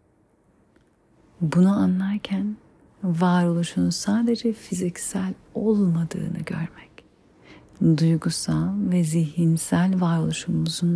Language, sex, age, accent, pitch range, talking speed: Turkish, female, 40-59, native, 150-180 Hz, 60 wpm